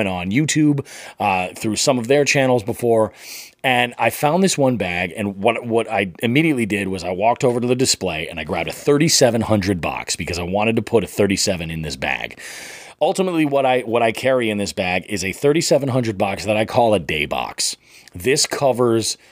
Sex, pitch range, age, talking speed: male, 100-135 Hz, 30-49, 200 wpm